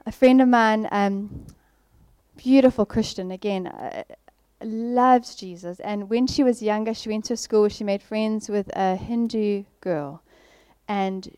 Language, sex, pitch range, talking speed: English, female, 200-240 Hz, 150 wpm